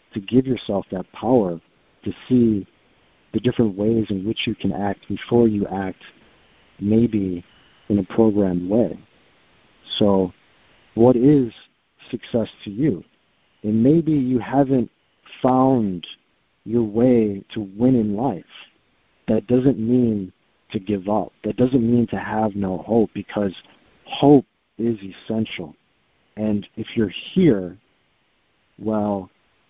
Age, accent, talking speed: 50-69, American, 125 wpm